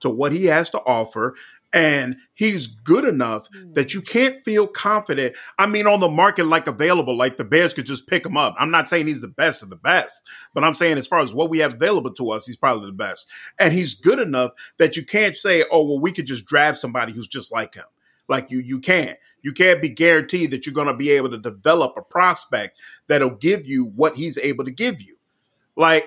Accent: American